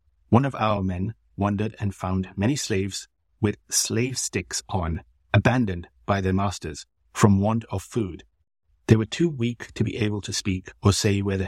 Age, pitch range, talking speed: 60-79, 90-115 Hz, 180 wpm